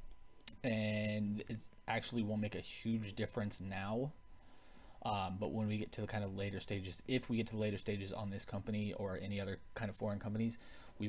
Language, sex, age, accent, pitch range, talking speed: English, male, 20-39, American, 100-120 Hz, 205 wpm